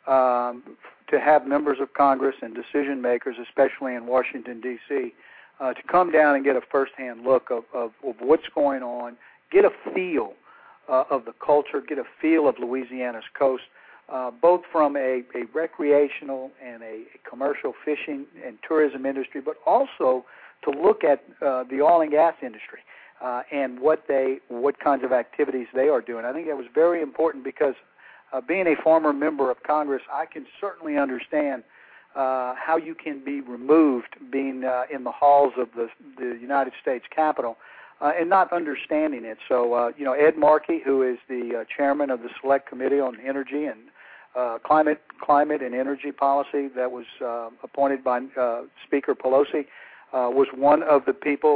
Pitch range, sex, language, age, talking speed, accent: 125-150 Hz, male, English, 60-79, 185 wpm, American